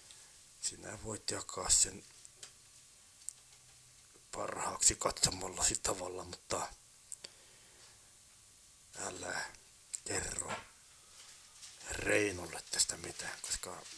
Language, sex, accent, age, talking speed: Finnish, male, native, 60-79, 60 wpm